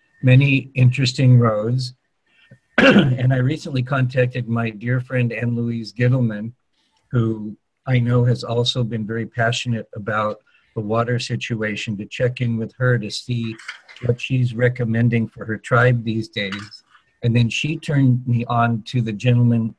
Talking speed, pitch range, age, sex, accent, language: 150 wpm, 115-125 Hz, 50-69, male, American, English